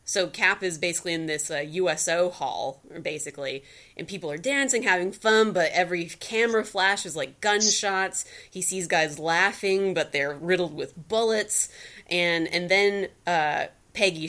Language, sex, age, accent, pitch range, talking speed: English, female, 20-39, American, 165-205 Hz, 155 wpm